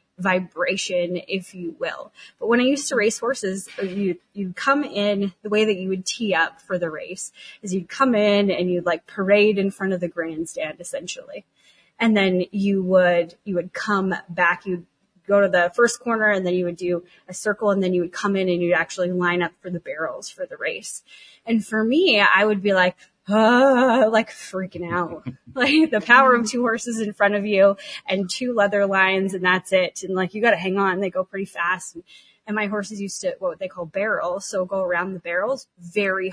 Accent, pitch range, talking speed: American, 180-215 Hz, 220 wpm